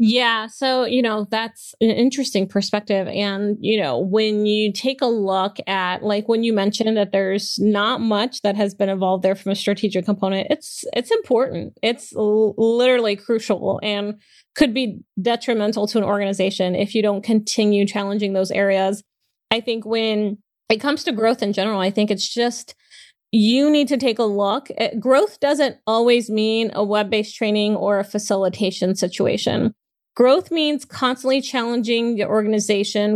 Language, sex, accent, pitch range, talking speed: English, female, American, 205-245 Hz, 165 wpm